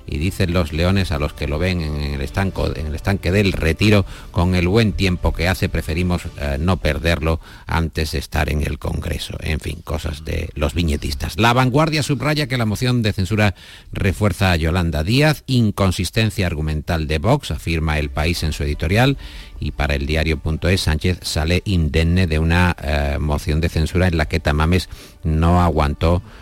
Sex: male